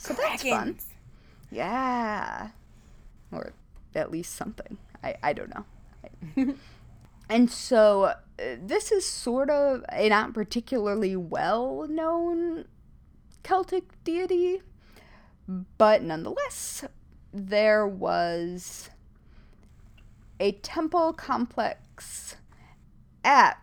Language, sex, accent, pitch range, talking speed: English, female, American, 185-305 Hz, 85 wpm